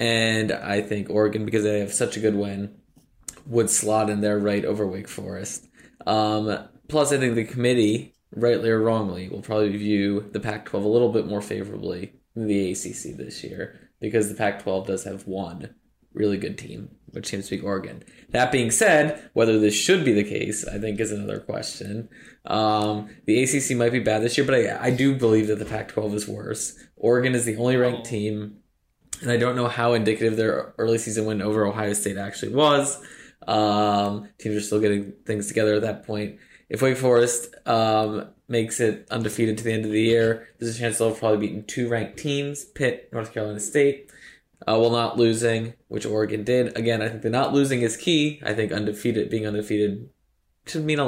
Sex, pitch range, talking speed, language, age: male, 105-120 Hz, 200 wpm, English, 20-39